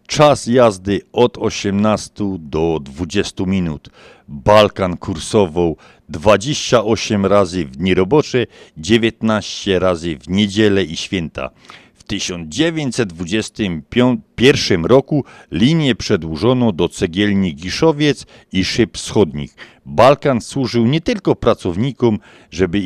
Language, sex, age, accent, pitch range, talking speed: Polish, male, 50-69, native, 90-125 Hz, 95 wpm